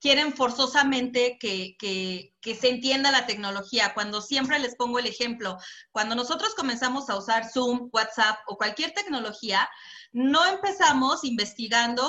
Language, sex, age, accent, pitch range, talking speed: Spanish, female, 30-49, Mexican, 210-265 Hz, 140 wpm